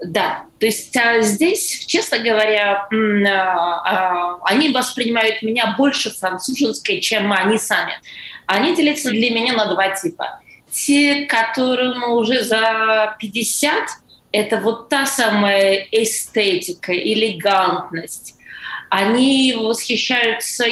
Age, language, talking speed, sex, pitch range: 20-39, Russian, 100 wpm, female, 195-250 Hz